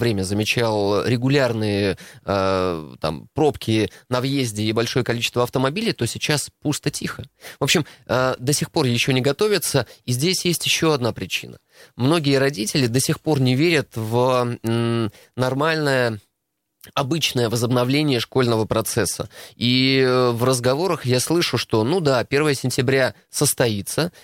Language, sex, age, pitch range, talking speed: Russian, male, 20-39, 115-145 Hz, 135 wpm